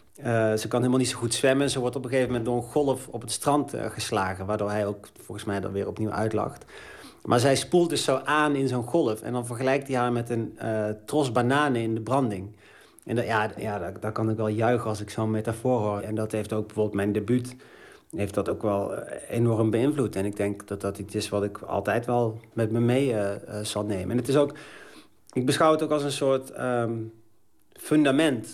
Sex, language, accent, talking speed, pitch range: male, Dutch, Dutch, 235 wpm, 105-125 Hz